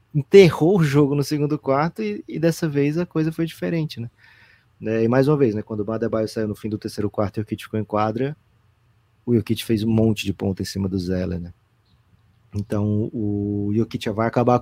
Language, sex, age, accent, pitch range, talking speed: Portuguese, male, 20-39, Brazilian, 110-140 Hz, 215 wpm